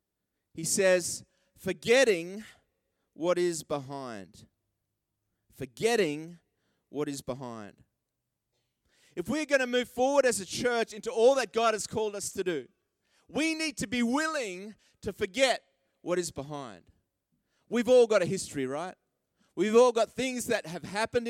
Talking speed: 145 wpm